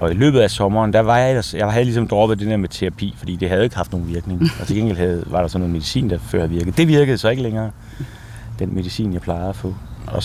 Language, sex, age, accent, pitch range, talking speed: Danish, male, 30-49, native, 85-110 Hz, 275 wpm